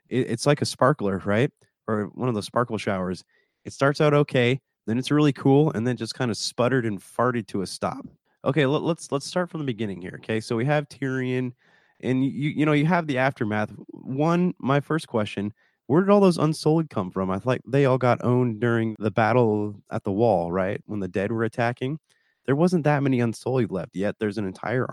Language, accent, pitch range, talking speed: English, American, 110-145 Hz, 220 wpm